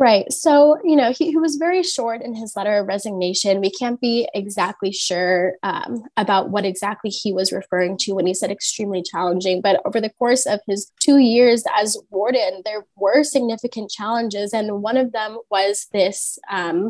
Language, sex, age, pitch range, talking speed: English, female, 20-39, 195-235 Hz, 190 wpm